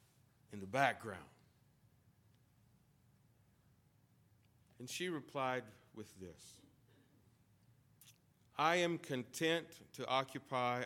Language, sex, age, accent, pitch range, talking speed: English, male, 50-69, American, 115-140 Hz, 70 wpm